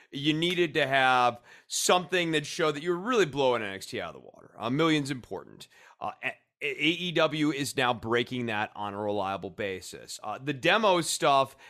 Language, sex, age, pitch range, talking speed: English, male, 30-49, 130-165 Hz, 180 wpm